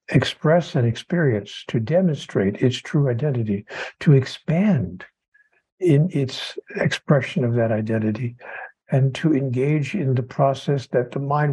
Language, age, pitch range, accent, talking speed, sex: English, 60-79, 120-145 Hz, American, 130 wpm, male